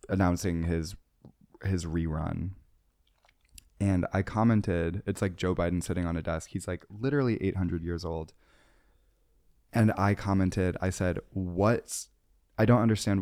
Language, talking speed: English, 135 wpm